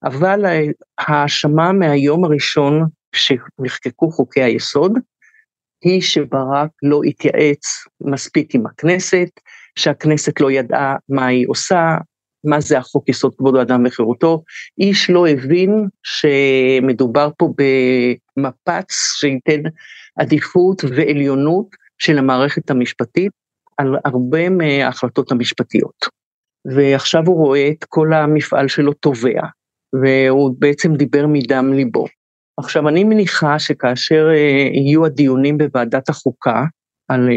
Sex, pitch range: male, 130-155 Hz